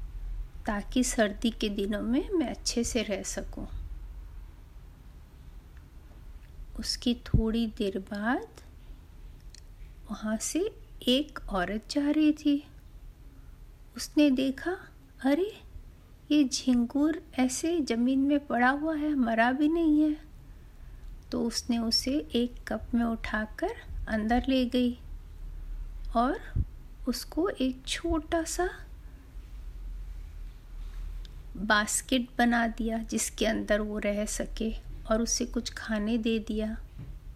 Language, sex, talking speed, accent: Hindi, female, 105 wpm, native